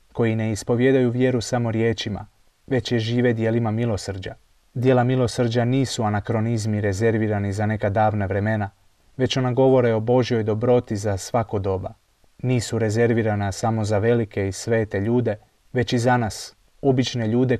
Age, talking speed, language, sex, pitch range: 30-49, 145 wpm, Croatian, male, 105-125 Hz